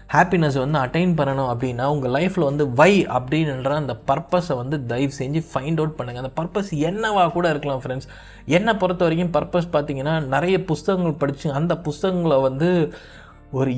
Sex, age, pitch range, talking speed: male, 20-39, 140-180 Hz, 155 wpm